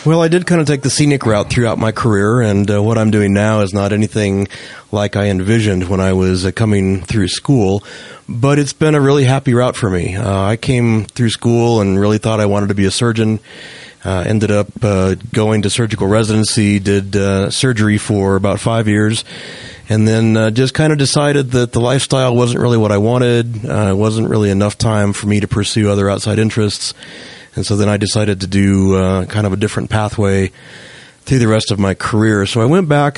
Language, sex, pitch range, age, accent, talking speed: English, male, 100-115 Hz, 30-49, American, 215 wpm